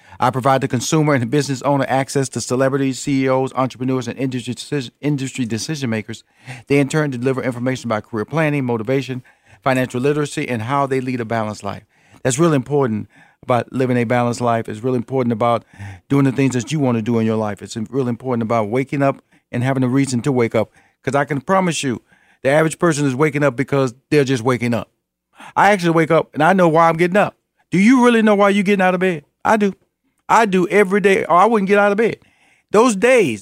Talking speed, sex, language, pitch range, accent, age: 220 wpm, male, English, 125-190 Hz, American, 40-59